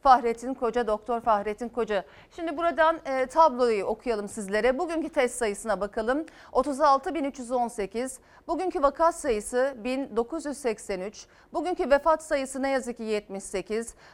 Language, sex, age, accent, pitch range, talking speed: Turkish, female, 40-59, native, 230-310 Hz, 110 wpm